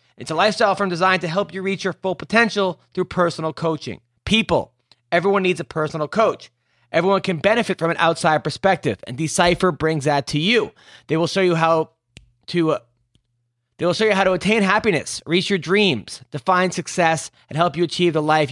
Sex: male